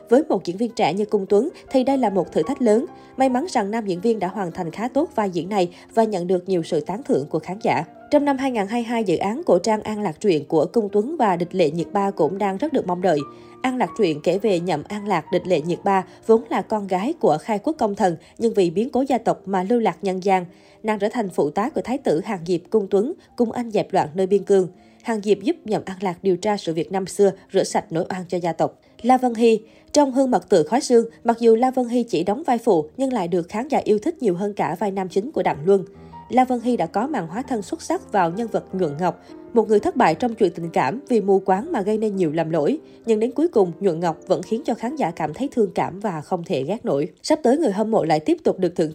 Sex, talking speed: female, 280 wpm